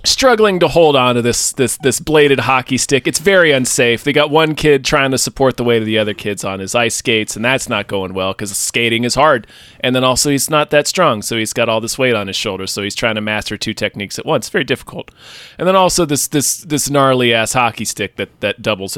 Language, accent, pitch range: English, American, 110-150 Hz